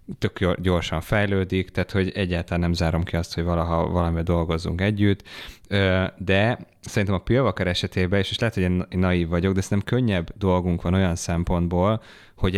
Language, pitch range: Hungarian, 90-105 Hz